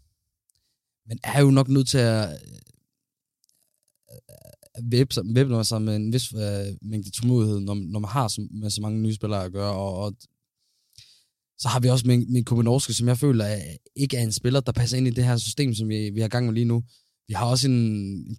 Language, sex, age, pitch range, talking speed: Danish, male, 20-39, 105-125 Hz, 215 wpm